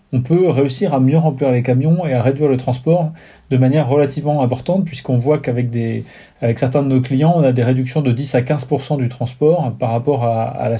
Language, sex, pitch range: French, male, 125-155 Hz